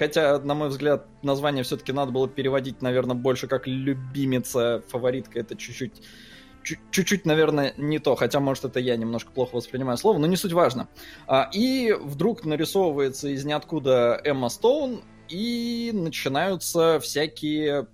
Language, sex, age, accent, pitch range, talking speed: Russian, male, 20-39, native, 135-195 Hz, 140 wpm